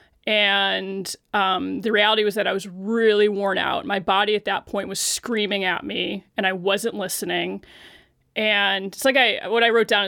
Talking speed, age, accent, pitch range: 190 wpm, 20-39, American, 195-240 Hz